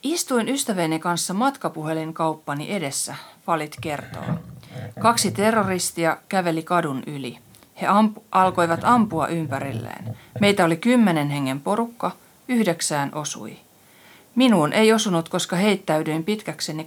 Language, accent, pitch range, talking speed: Finnish, native, 160-215 Hz, 105 wpm